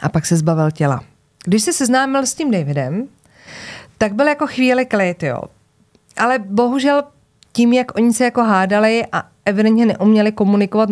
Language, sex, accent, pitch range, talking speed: Czech, female, native, 170-220 Hz, 160 wpm